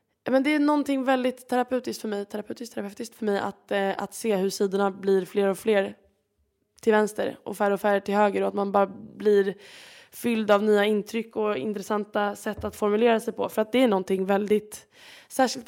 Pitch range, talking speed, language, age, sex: 200-235 Hz, 205 wpm, Swedish, 10-29, female